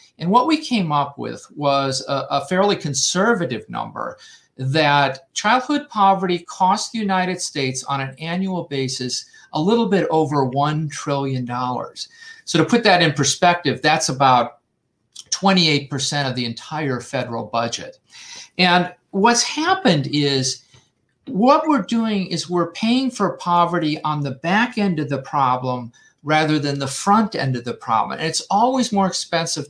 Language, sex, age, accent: English, male, 50-69, American